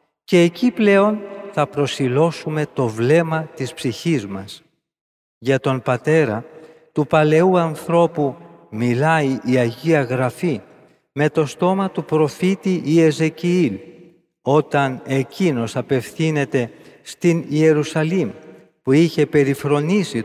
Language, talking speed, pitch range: Greek, 100 wpm, 130-170 Hz